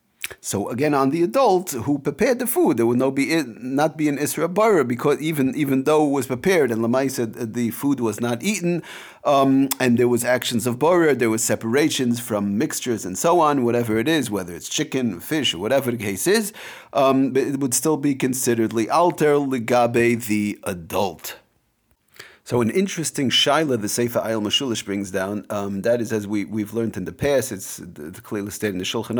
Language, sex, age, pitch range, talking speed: English, male, 40-59, 115-150 Hz, 210 wpm